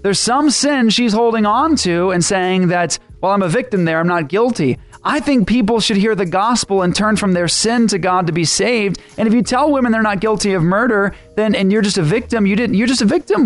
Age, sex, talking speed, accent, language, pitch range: 30-49, male, 255 wpm, American, English, 170-225 Hz